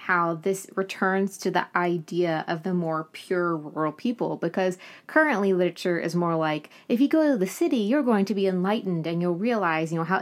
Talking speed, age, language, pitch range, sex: 205 wpm, 20-39, English, 165-195 Hz, female